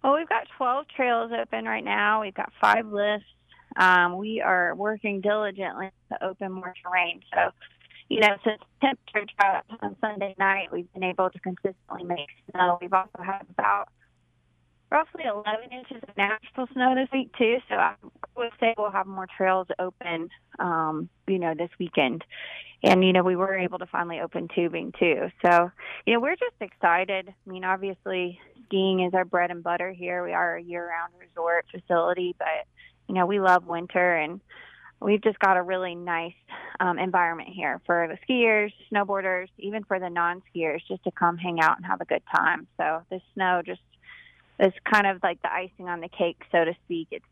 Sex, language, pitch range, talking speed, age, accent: female, English, 175-210 Hz, 190 wpm, 20-39, American